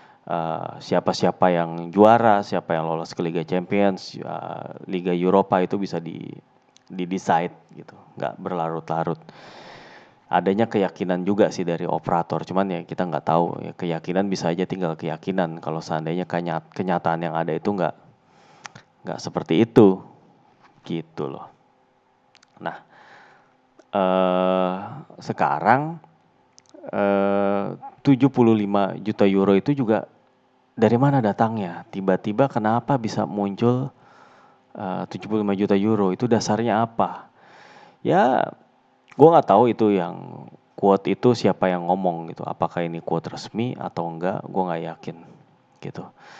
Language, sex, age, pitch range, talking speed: Indonesian, male, 30-49, 85-100 Hz, 120 wpm